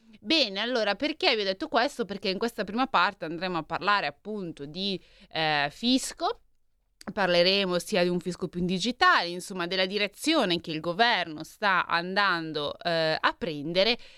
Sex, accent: female, native